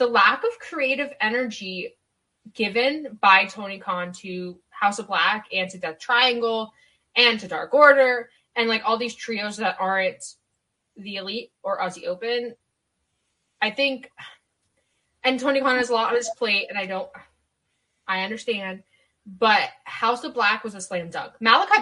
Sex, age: female, 10-29